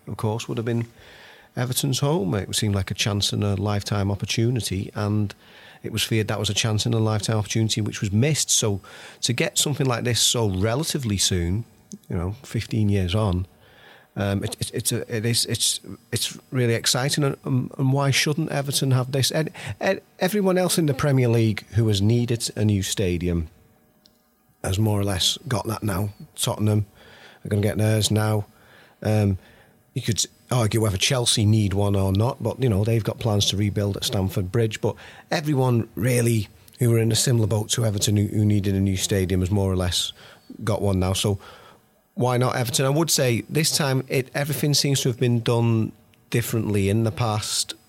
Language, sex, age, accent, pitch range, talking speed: English, male, 40-59, British, 100-125 Hz, 195 wpm